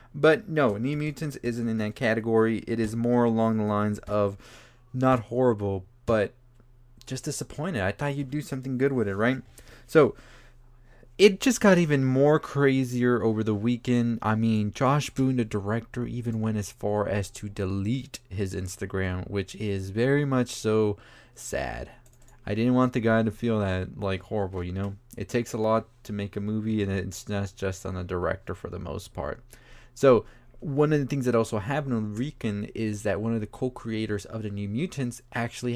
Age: 20-39